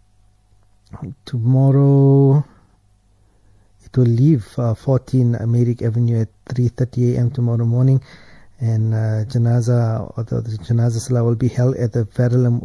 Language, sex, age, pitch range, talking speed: English, male, 50-69, 110-125 Hz, 130 wpm